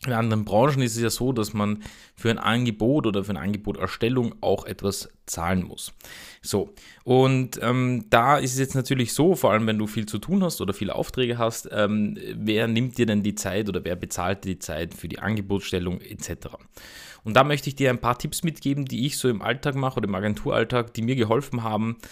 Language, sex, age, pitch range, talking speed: German, male, 20-39, 95-120 Hz, 215 wpm